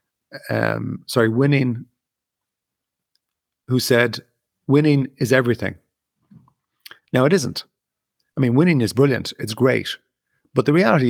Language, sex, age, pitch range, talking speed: English, male, 40-59, 110-135 Hz, 115 wpm